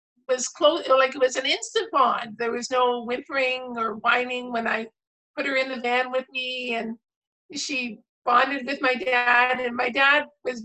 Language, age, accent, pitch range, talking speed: English, 50-69, American, 225-270 Hz, 185 wpm